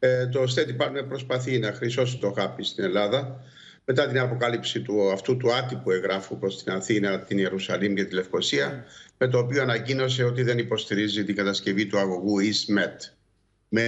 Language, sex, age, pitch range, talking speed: Greek, male, 60-79, 120-155 Hz, 175 wpm